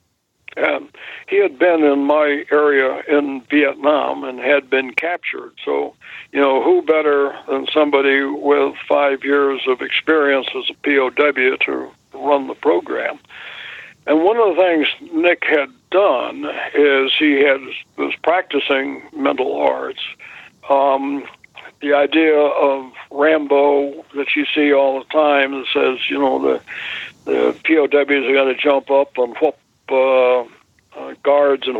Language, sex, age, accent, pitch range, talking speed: English, male, 60-79, American, 135-150 Hz, 145 wpm